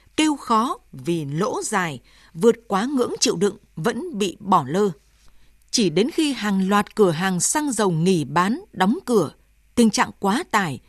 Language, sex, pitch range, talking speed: Vietnamese, female, 185-245 Hz, 170 wpm